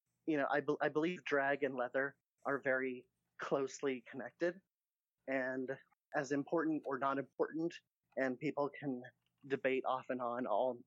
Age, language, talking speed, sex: 30-49, English, 150 wpm, male